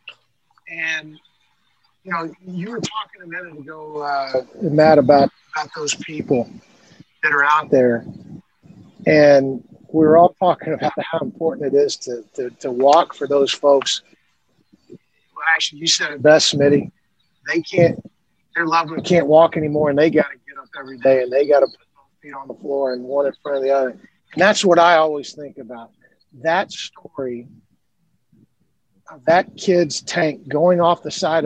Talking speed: 180 wpm